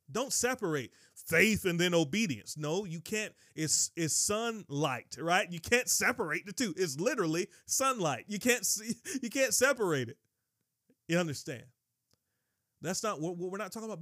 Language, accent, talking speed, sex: English, American, 155 wpm, male